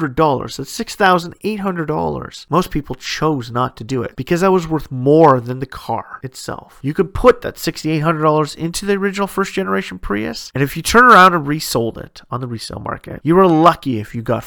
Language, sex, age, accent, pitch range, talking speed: English, male, 30-49, American, 130-190 Hz, 195 wpm